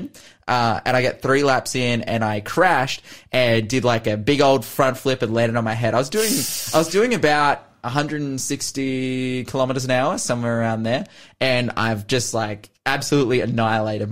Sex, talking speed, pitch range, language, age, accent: male, 185 wpm, 115-140 Hz, English, 20-39, Australian